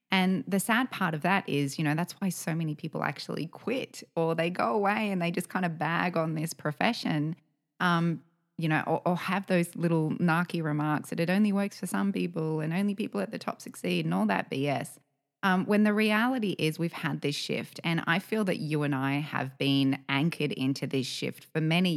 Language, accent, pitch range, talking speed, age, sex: English, Australian, 145-185 Hz, 220 wpm, 20-39, female